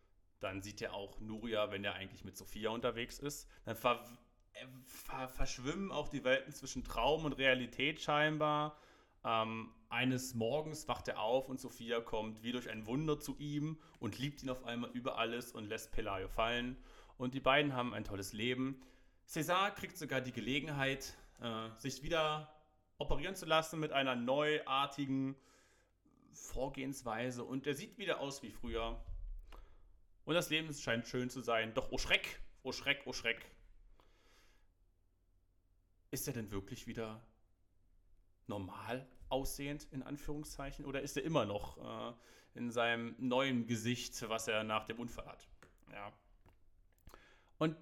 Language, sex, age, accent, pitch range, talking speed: German, male, 30-49, German, 110-140 Hz, 150 wpm